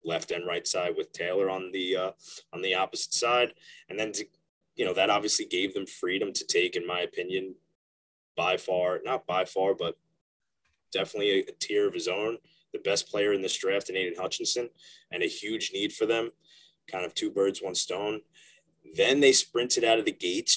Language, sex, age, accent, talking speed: English, male, 20-39, American, 200 wpm